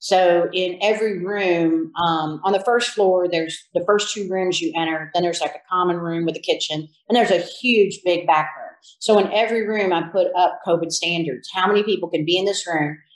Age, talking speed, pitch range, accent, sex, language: 40-59, 225 wpm, 165-200 Hz, American, female, English